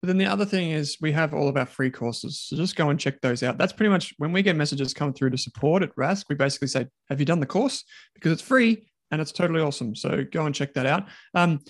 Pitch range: 130-170 Hz